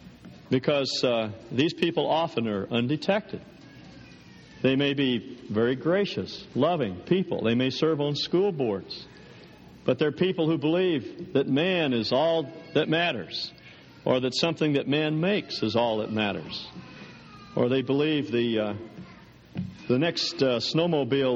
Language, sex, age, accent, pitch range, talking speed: English, male, 60-79, American, 115-160 Hz, 140 wpm